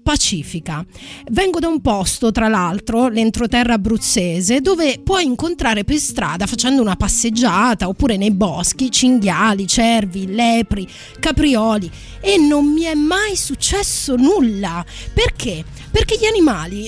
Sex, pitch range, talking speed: female, 215-295 Hz, 125 wpm